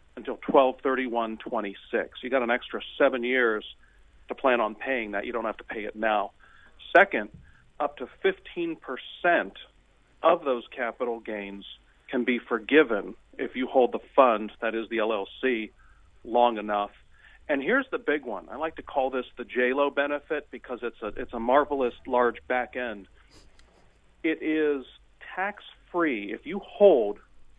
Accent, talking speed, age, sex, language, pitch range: American, 165 wpm, 40-59, male, English, 105-145 Hz